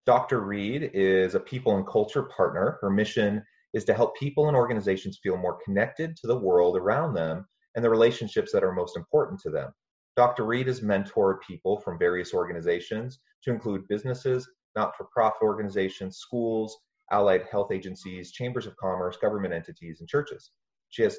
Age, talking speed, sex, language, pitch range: 30-49, 165 wpm, male, English, 95-125 Hz